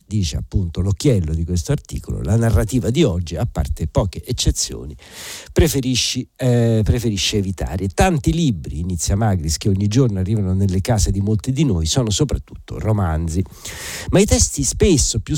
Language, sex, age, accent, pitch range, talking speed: Italian, male, 50-69, native, 90-125 Hz, 150 wpm